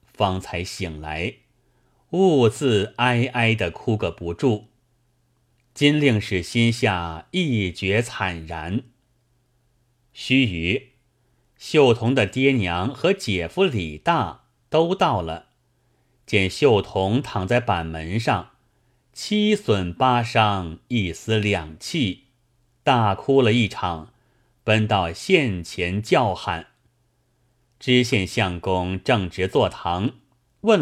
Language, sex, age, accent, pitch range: Chinese, male, 30-49, native, 100-125 Hz